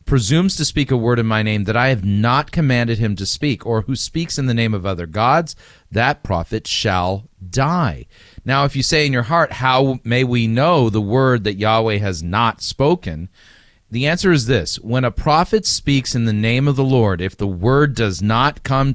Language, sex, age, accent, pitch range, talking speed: English, male, 40-59, American, 105-140 Hz, 210 wpm